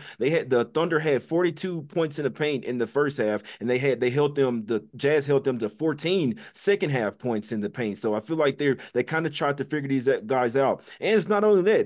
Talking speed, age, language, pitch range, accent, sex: 260 wpm, 30-49, English, 115-150 Hz, American, male